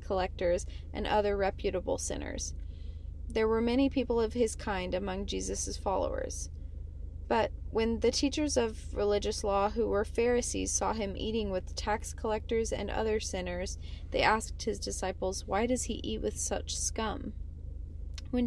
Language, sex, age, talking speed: English, female, 20-39, 150 wpm